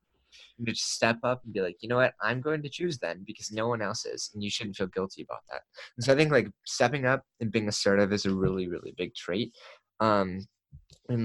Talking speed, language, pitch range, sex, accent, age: 240 wpm, English, 95-115 Hz, male, American, 20-39